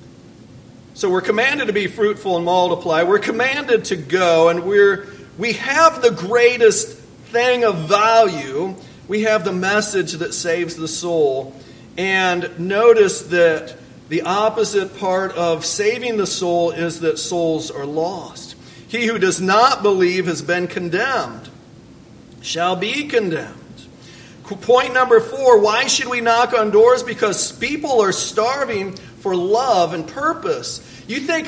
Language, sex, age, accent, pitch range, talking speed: English, male, 50-69, American, 170-245 Hz, 140 wpm